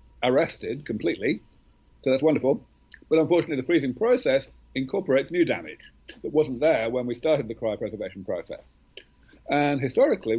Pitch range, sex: 110-135 Hz, male